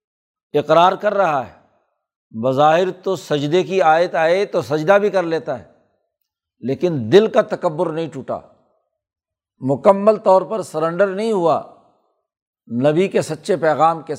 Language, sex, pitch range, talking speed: Urdu, male, 140-195 Hz, 140 wpm